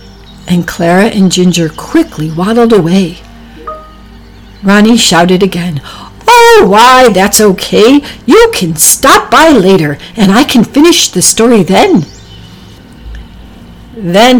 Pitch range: 175-265 Hz